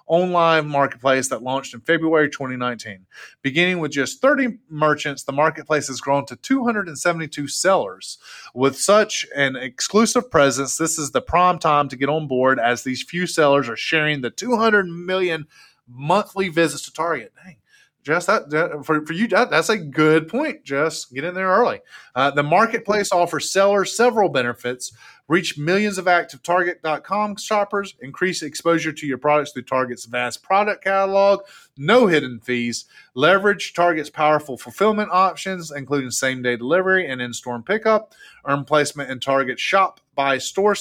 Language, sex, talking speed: English, male, 150 wpm